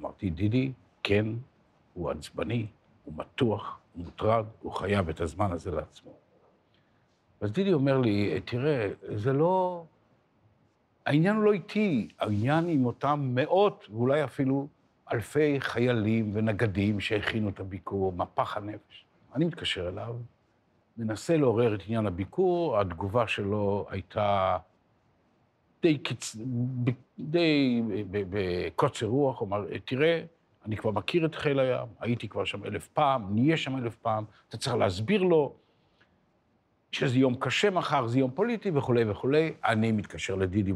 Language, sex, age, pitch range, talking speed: Hebrew, male, 60-79, 100-140 Hz, 145 wpm